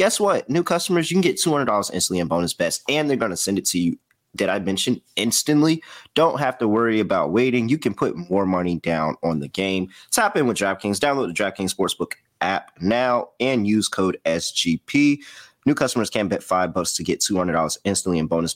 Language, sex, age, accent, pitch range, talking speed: English, male, 30-49, American, 95-135 Hz, 210 wpm